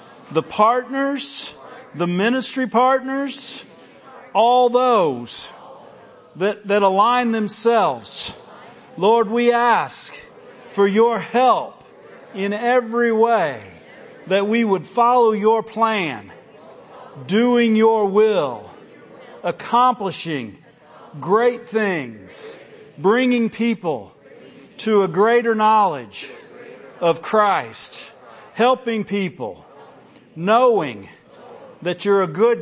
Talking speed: 85 wpm